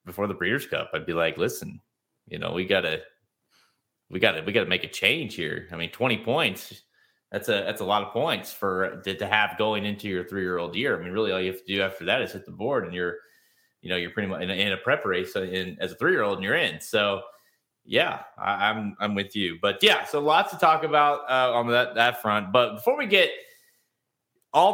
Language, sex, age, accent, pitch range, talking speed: English, male, 30-49, American, 105-140 Hz, 230 wpm